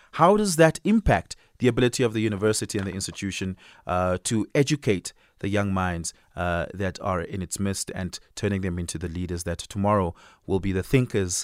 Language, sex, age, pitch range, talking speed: English, male, 30-49, 90-125 Hz, 190 wpm